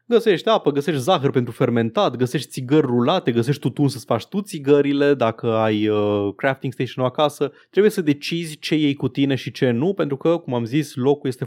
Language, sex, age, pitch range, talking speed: Romanian, male, 20-39, 115-145 Hz, 200 wpm